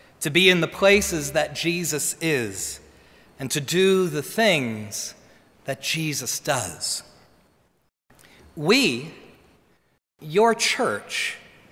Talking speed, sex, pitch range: 95 wpm, male, 140-220 Hz